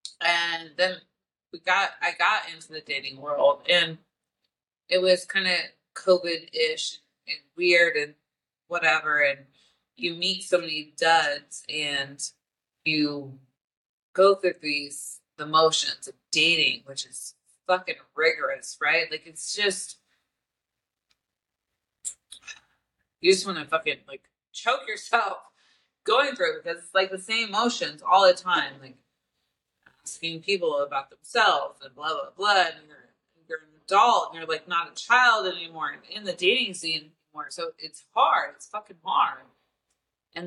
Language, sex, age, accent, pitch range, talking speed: English, female, 30-49, American, 150-185 Hz, 140 wpm